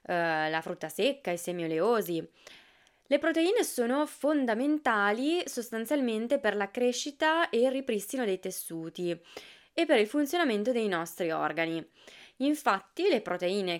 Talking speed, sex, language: 125 wpm, female, Italian